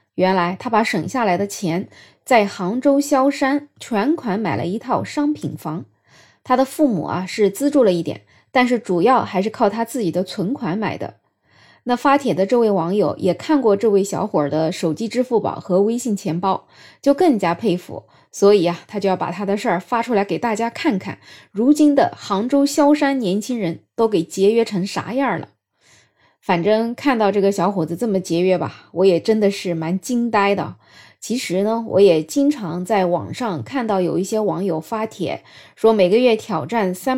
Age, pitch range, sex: 20-39, 180-245 Hz, female